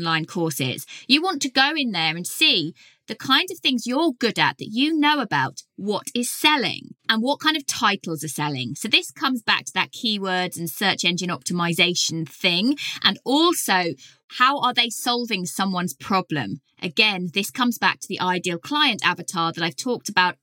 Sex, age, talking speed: female, 20-39, 190 wpm